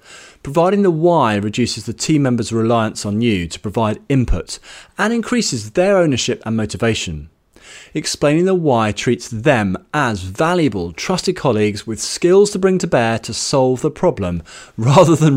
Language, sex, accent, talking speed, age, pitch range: English, male, British, 155 wpm, 30-49, 110-175 Hz